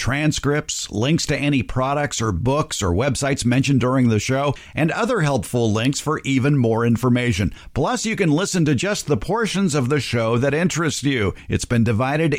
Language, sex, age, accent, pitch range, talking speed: English, male, 50-69, American, 115-155 Hz, 185 wpm